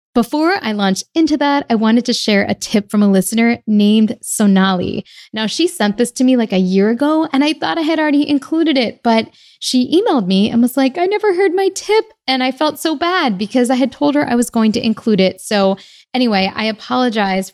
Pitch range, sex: 195-275 Hz, female